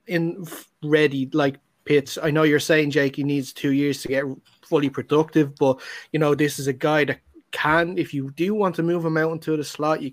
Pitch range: 145-170 Hz